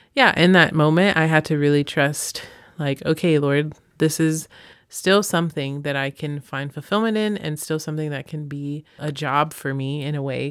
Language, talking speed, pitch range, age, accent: English, 200 wpm, 145-170 Hz, 30-49, American